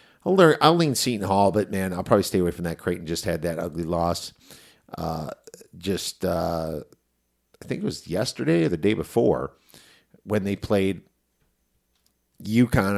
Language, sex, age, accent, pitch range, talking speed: English, male, 50-69, American, 85-100 Hz, 165 wpm